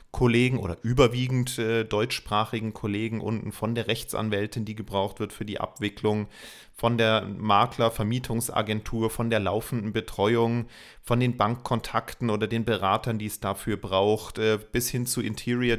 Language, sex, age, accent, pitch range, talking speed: German, male, 30-49, German, 100-115 Hz, 145 wpm